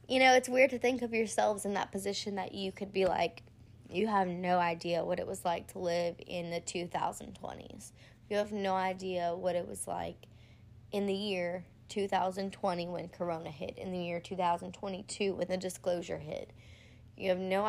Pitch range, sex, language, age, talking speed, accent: 170-205 Hz, female, English, 20-39, 185 wpm, American